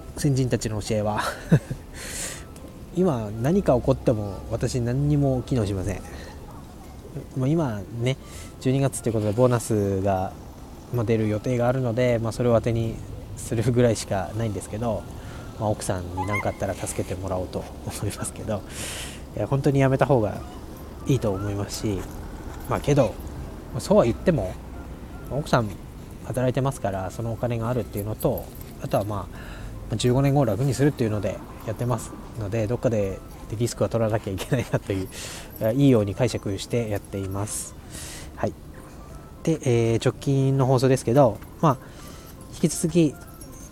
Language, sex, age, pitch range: Japanese, male, 20-39, 100-130 Hz